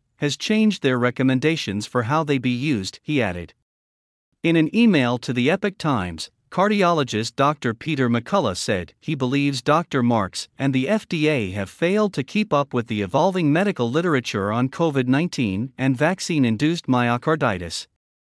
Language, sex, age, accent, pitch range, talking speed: English, male, 50-69, American, 115-165 Hz, 145 wpm